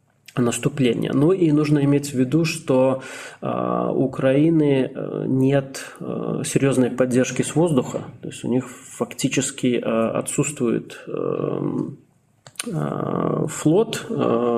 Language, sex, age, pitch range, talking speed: Russian, male, 20-39, 120-145 Hz, 90 wpm